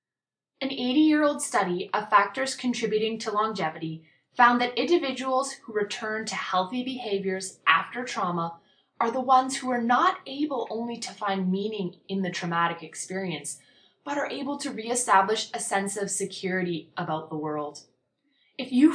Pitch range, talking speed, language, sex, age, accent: 170-245 Hz, 150 wpm, English, female, 20-39, American